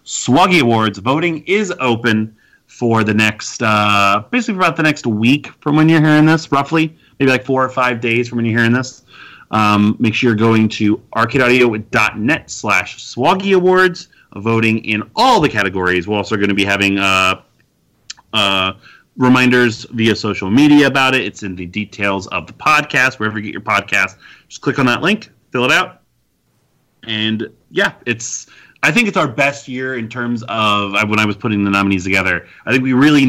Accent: American